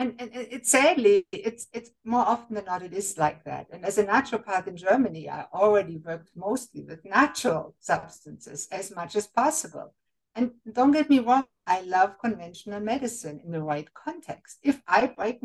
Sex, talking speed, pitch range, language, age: female, 185 wpm, 170-245 Hz, English, 60-79